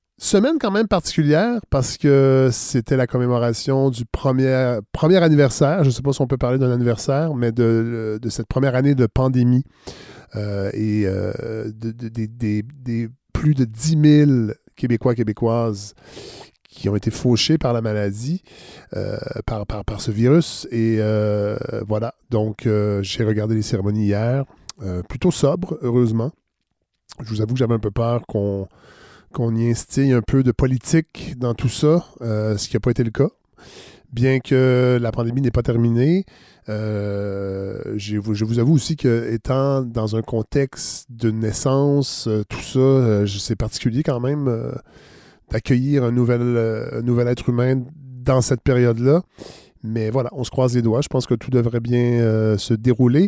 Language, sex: French, male